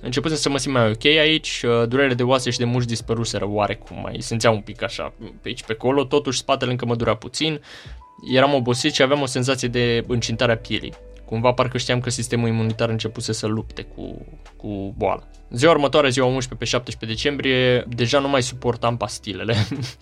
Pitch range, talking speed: 115-130 Hz, 190 wpm